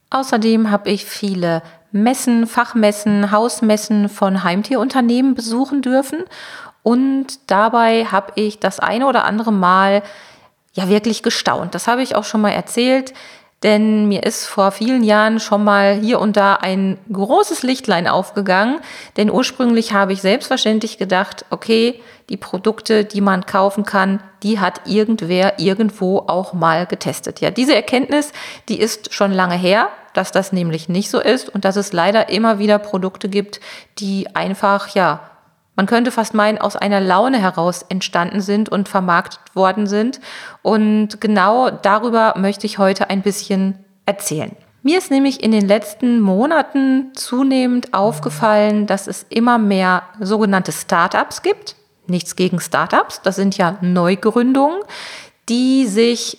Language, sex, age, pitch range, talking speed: German, female, 40-59, 195-230 Hz, 145 wpm